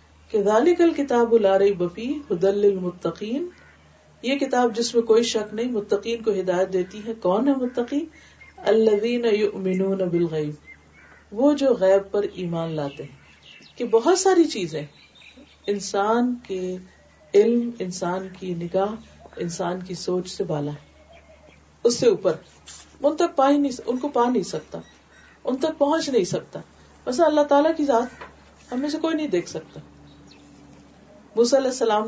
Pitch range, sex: 190-280 Hz, female